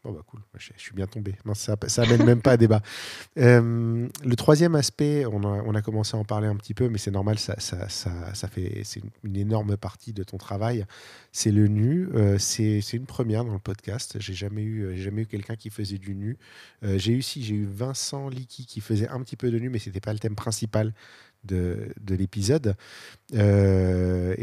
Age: 40-59